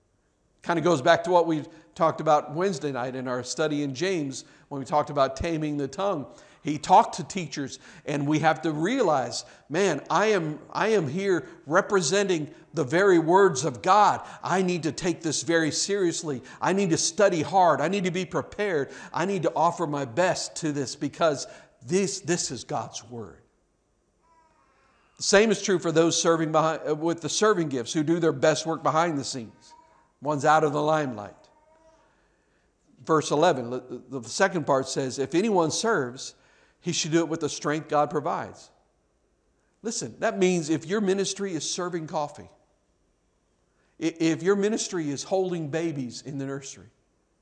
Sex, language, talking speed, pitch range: male, English, 170 wpm, 150-195 Hz